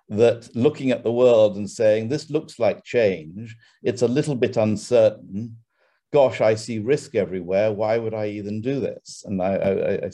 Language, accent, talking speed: English, British, 185 wpm